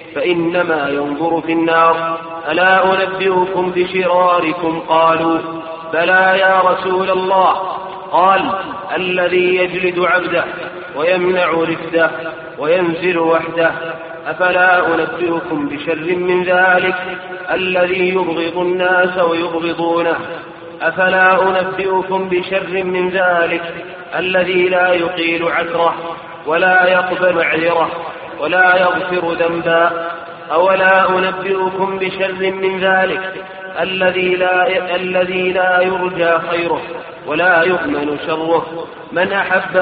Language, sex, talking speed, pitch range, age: Arabic, male, 90 wpm, 165-185 Hz, 30-49